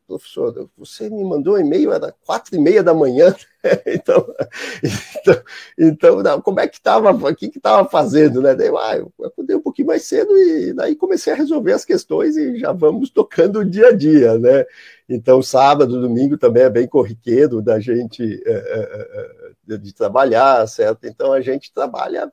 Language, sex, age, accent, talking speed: Portuguese, male, 50-69, Brazilian, 170 wpm